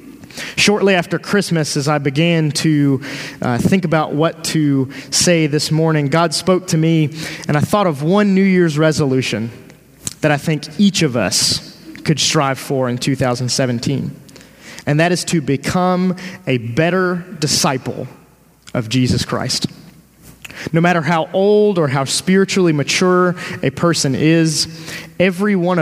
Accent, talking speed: American, 145 wpm